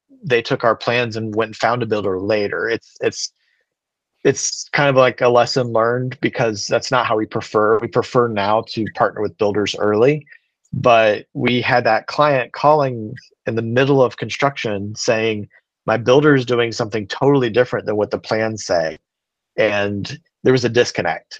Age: 40-59